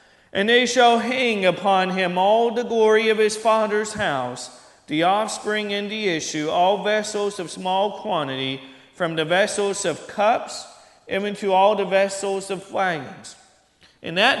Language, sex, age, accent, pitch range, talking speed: English, male, 40-59, American, 155-190 Hz, 155 wpm